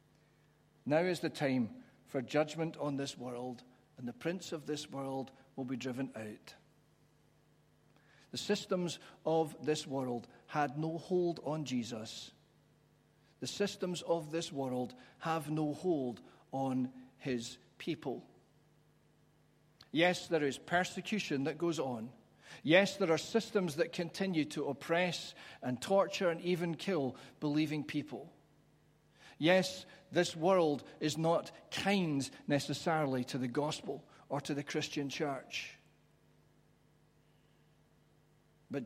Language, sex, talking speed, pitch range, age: English, male, 120 wpm, 140-170 Hz, 50-69